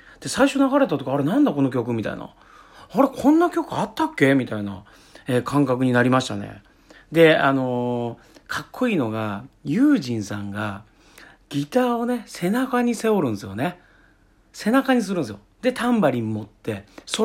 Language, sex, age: Japanese, male, 40-59